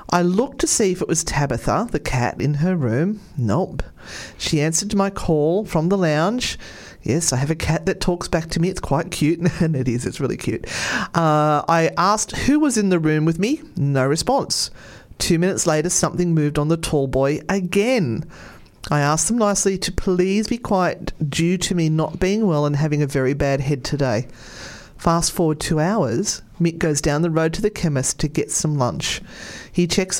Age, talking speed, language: 40-59, 200 wpm, English